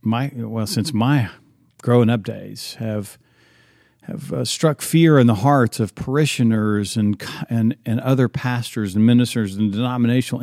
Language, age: English, 50-69